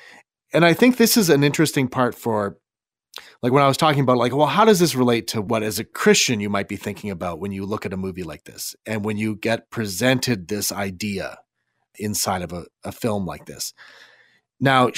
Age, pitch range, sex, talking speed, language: 30-49, 105-130 Hz, male, 215 wpm, English